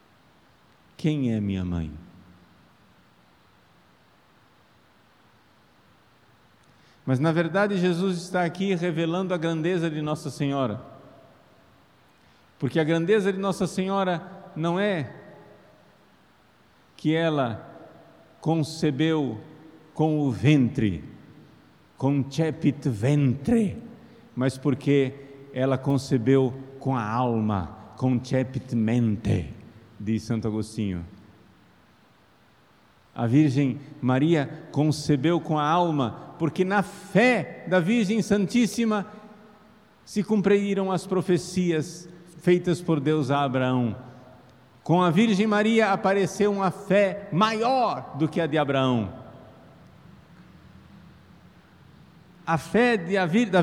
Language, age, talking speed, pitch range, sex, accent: Portuguese, 50-69, 90 wpm, 130-190 Hz, male, Brazilian